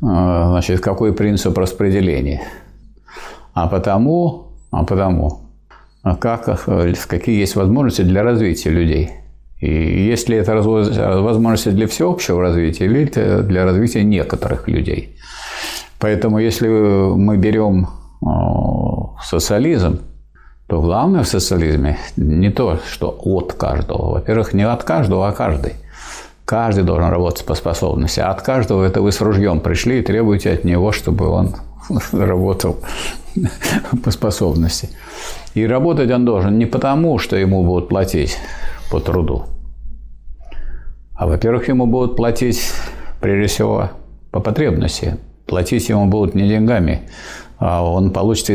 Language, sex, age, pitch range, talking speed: Russian, male, 50-69, 90-110 Hz, 120 wpm